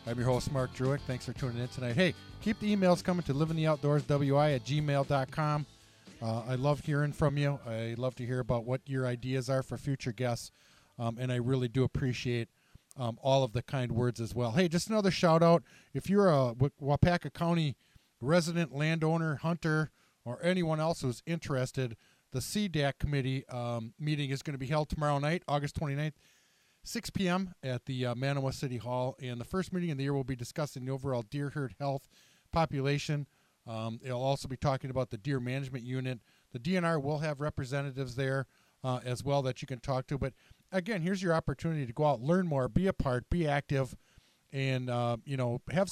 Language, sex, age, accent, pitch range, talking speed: English, male, 40-59, American, 125-150 Hz, 200 wpm